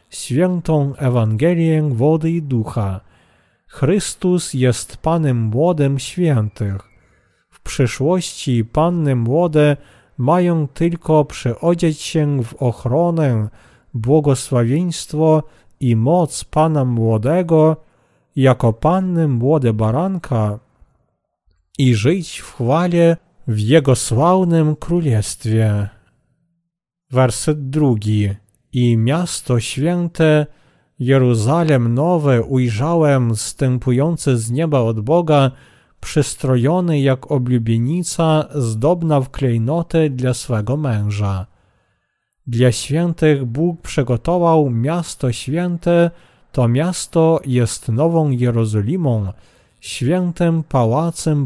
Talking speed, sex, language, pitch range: 85 wpm, male, Polish, 120-160 Hz